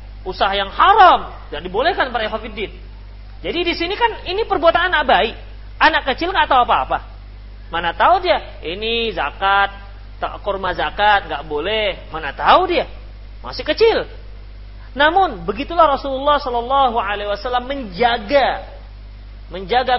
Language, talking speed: Indonesian, 125 wpm